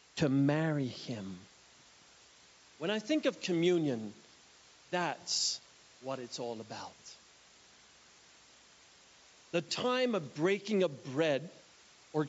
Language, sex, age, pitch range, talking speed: English, male, 50-69, 160-250 Hz, 100 wpm